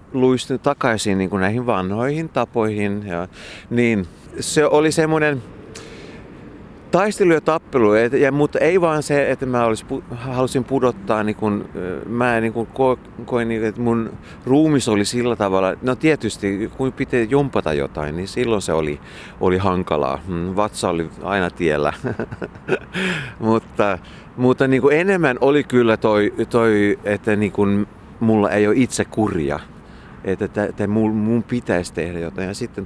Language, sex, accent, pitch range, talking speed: Finnish, male, native, 95-125 Hz, 155 wpm